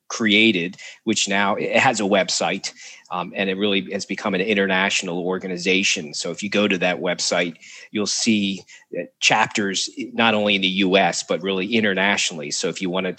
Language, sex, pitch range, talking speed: English, male, 90-105 Hz, 175 wpm